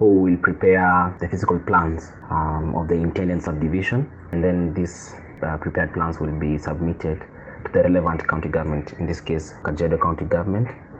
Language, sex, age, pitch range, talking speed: English, male, 20-39, 80-95 Hz, 170 wpm